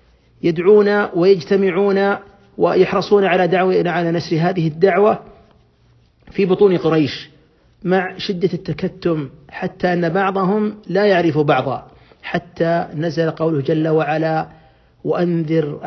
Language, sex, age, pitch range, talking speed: Arabic, male, 40-59, 155-185 Hz, 100 wpm